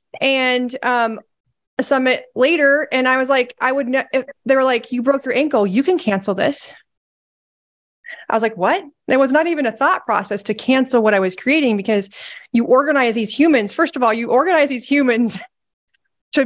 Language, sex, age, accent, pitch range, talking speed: English, female, 20-39, American, 215-280 Hz, 190 wpm